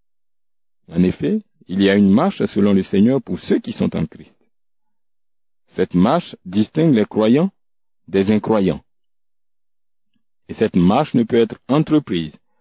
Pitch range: 95-150 Hz